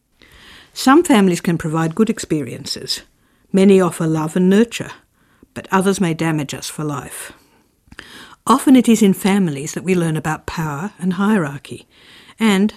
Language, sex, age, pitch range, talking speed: English, female, 60-79, 165-210 Hz, 145 wpm